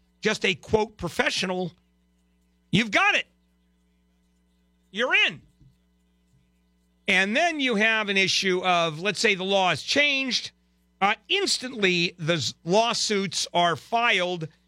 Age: 50-69